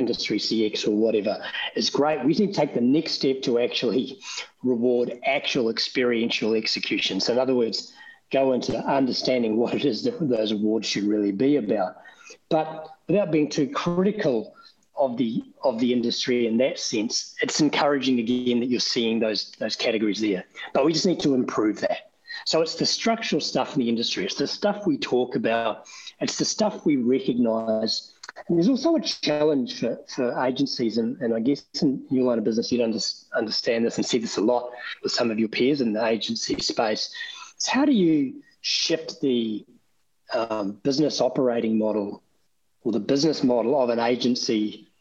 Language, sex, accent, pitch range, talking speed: English, male, Australian, 115-170 Hz, 185 wpm